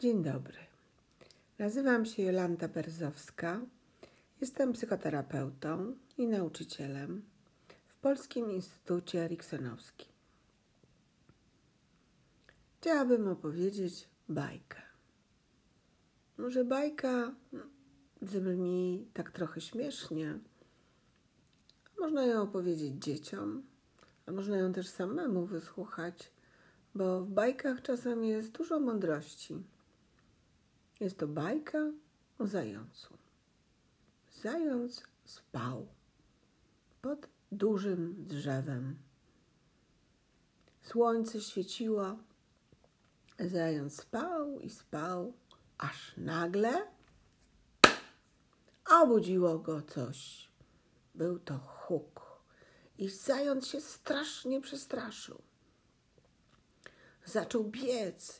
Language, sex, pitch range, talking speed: Polish, female, 170-250 Hz, 75 wpm